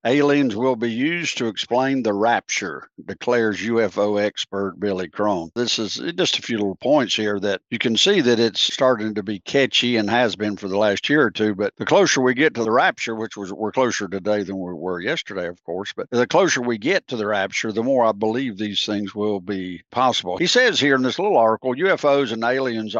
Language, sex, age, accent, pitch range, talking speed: English, male, 60-79, American, 105-135 Hz, 225 wpm